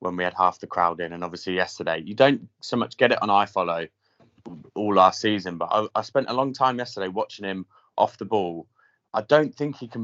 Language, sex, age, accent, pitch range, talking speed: English, male, 30-49, British, 100-125 Hz, 240 wpm